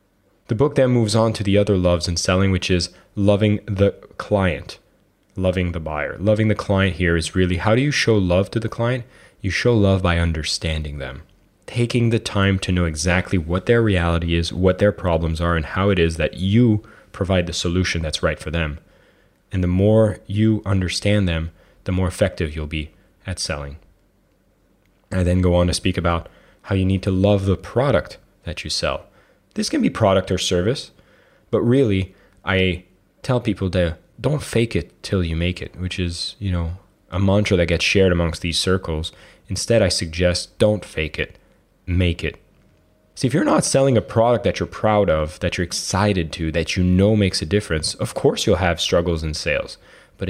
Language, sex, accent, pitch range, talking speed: English, male, American, 85-100 Hz, 195 wpm